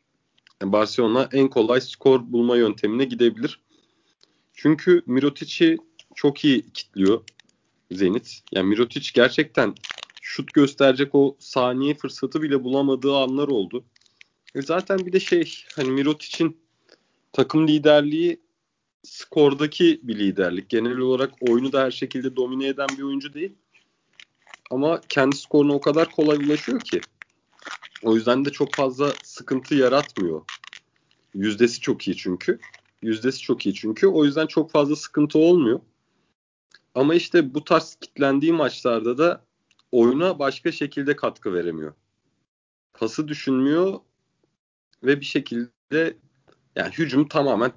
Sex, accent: male, native